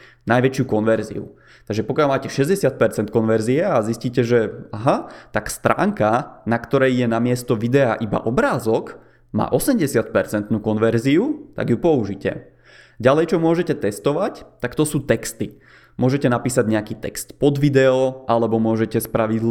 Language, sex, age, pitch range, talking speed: Czech, male, 20-39, 115-140 Hz, 130 wpm